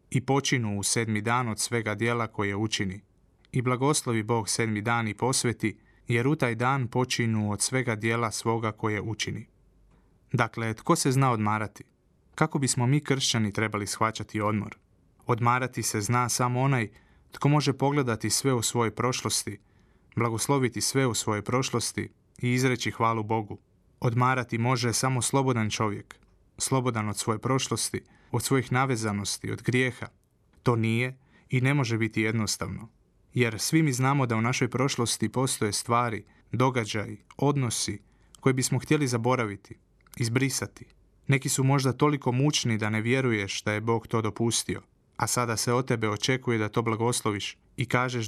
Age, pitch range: 30-49, 110-130 Hz